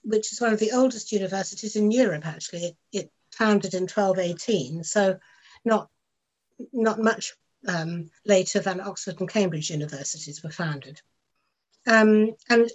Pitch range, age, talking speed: 185-220 Hz, 60-79, 140 wpm